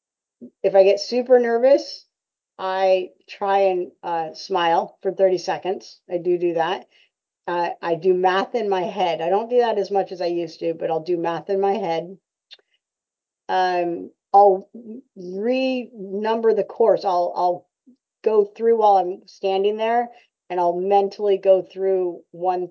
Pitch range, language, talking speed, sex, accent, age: 175-200 Hz, English, 160 wpm, female, American, 40-59